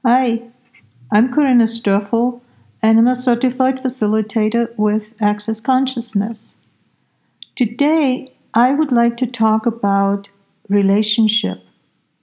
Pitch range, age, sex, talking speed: 200-245 Hz, 60-79, female, 100 wpm